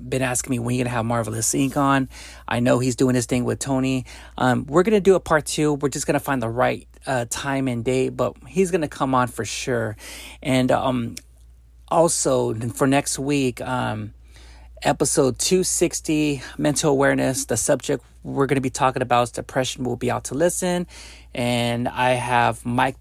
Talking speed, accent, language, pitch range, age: 195 wpm, American, English, 120-145 Hz, 30-49